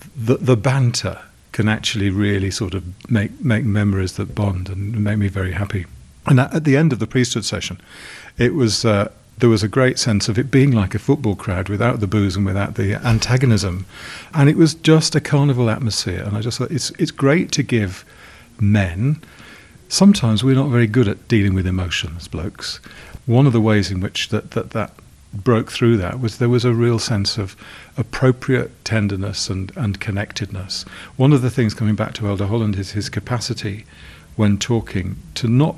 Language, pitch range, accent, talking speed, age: English, 100-120 Hz, British, 195 wpm, 40-59